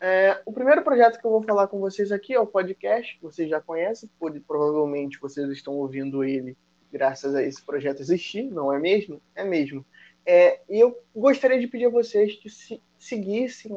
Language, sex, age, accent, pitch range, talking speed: Portuguese, male, 20-39, Brazilian, 145-205 Hz, 195 wpm